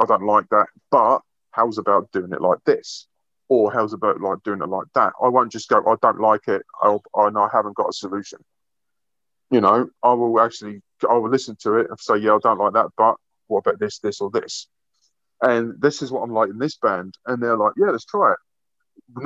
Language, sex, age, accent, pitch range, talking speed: English, male, 30-49, British, 110-135 Hz, 235 wpm